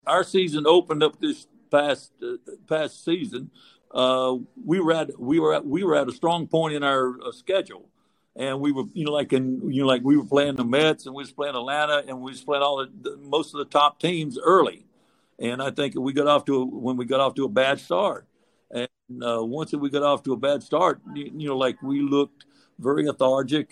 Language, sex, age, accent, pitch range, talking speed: English, male, 60-79, American, 130-160 Hz, 240 wpm